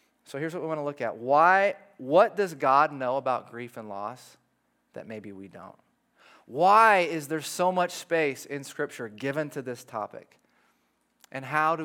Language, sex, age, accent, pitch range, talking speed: English, male, 30-49, American, 125-170 Hz, 175 wpm